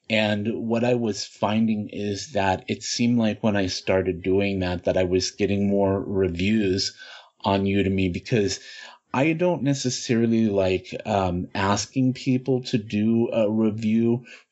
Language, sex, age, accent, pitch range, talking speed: English, male, 30-49, American, 95-115 Hz, 145 wpm